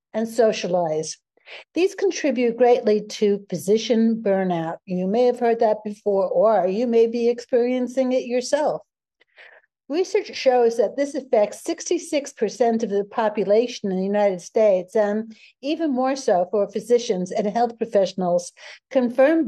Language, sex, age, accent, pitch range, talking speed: English, female, 60-79, American, 210-260 Hz, 135 wpm